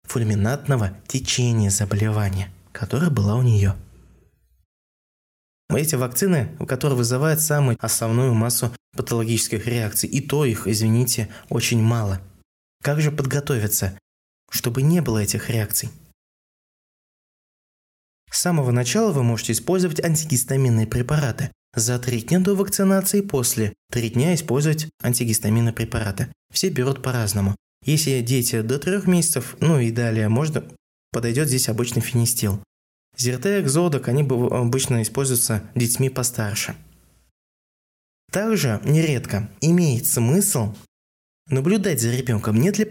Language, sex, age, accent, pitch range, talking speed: Russian, male, 20-39, native, 110-140 Hz, 115 wpm